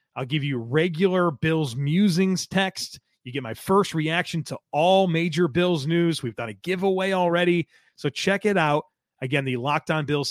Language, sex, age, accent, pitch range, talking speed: English, male, 30-49, American, 135-175 Hz, 180 wpm